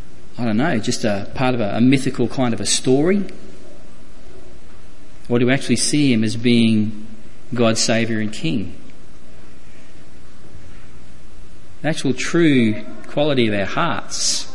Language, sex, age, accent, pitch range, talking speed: English, male, 40-59, Australian, 105-130 Hz, 135 wpm